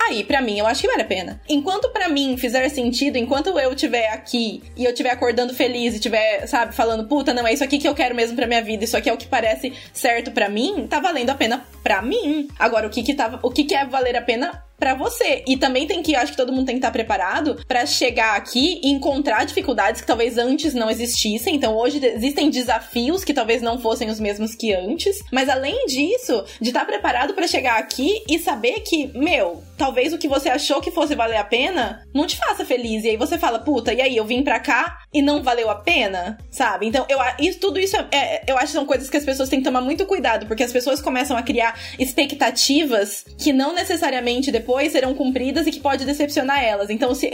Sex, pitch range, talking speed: female, 235-295 Hz, 235 wpm